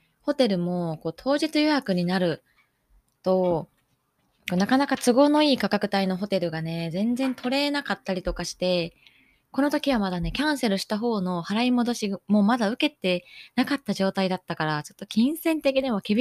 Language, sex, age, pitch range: Japanese, female, 20-39, 180-250 Hz